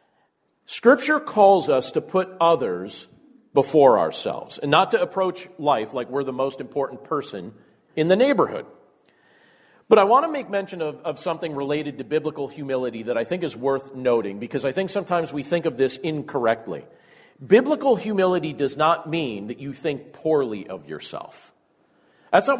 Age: 40-59